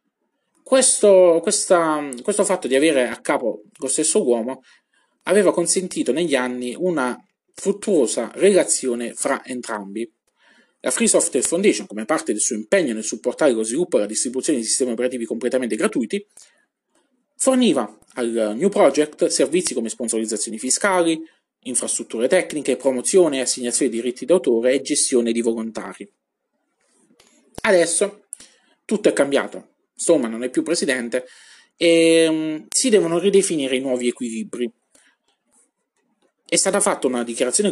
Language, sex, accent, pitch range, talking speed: Italian, male, native, 125-185 Hz, 130 wpm